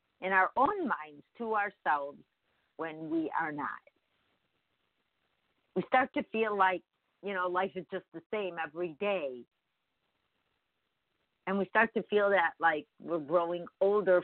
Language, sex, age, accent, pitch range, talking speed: English, female, 50-69, American, 145-190 Hz, 145 wpm